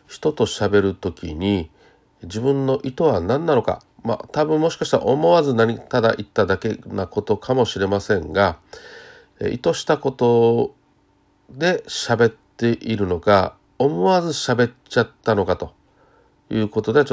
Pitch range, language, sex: 100-140 Hz, Japanese, male